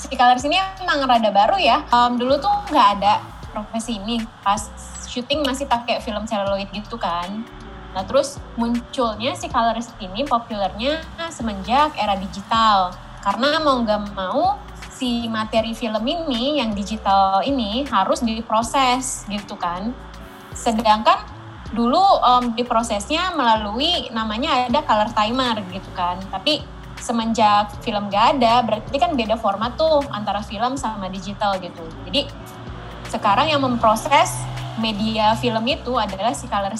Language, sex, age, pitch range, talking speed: Indonesian, female, 20-39, 205-260 Hz, 130 wpm